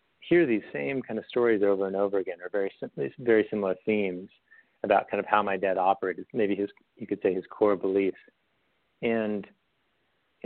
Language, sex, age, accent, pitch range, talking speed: English, male, 40-59, American, 100-120 Hz, 185 wpm